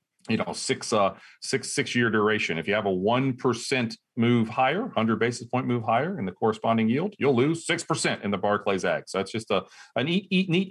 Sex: male